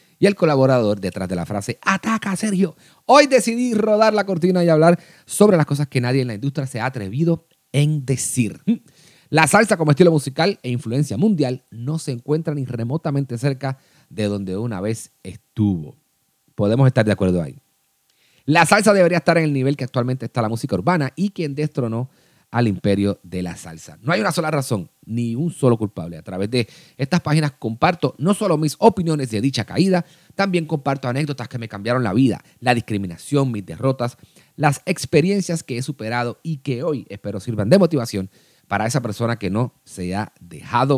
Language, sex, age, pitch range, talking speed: Spanish, male, 30-49, 115-165 Hz, 185 wpm